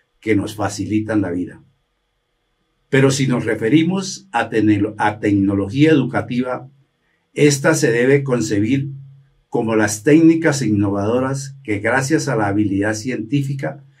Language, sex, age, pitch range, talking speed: Spanish, male, 60-79, 110-145 Hz, 120 wpm